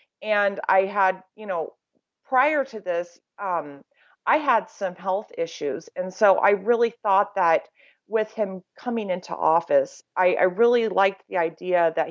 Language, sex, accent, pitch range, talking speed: English, female, American, 175-220 Hz, 160 wpm